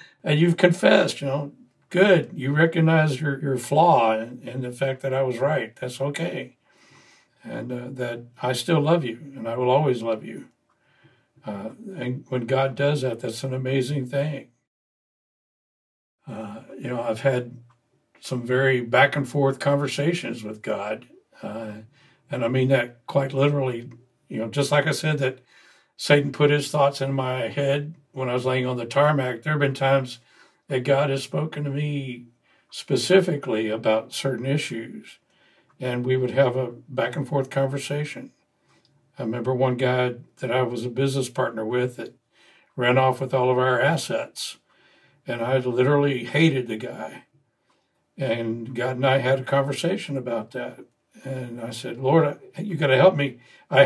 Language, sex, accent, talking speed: English, male, American, 165 wpm